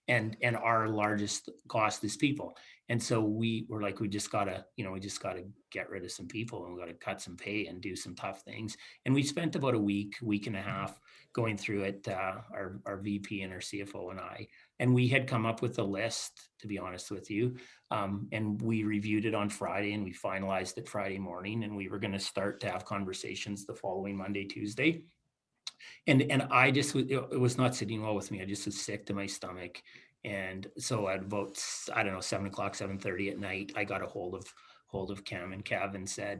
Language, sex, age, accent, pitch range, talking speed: English, male, 30-49, American, 100-120 Hz, 230 wpm